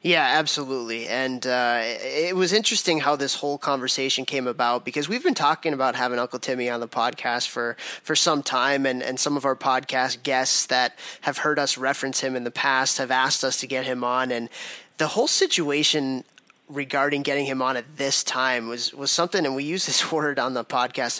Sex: male